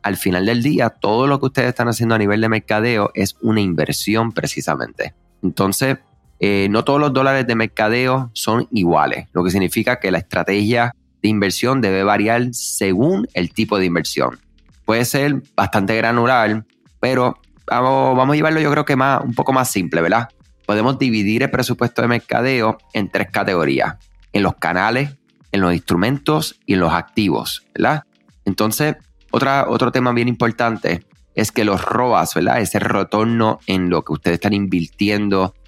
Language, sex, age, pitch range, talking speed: Spanish, male, 30-49, 95-120 Hz, 165 wpm